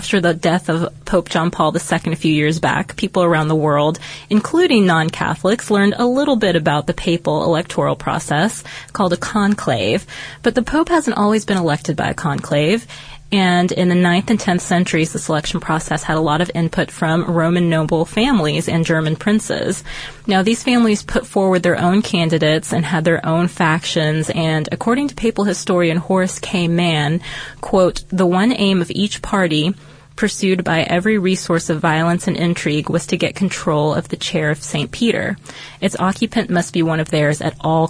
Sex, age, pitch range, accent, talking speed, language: female, 20-39, 160-195 Hz, American, 185 wpm, English